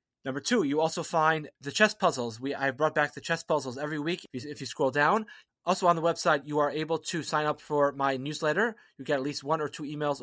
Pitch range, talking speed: 145-170 Hz, 260 wpm